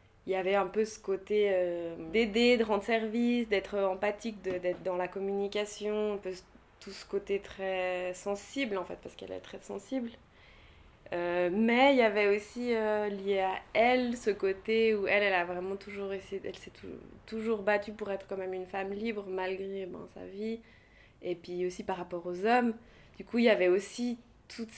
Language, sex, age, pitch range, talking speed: English, female, 20-39, 185-220 Hz, 200 wpm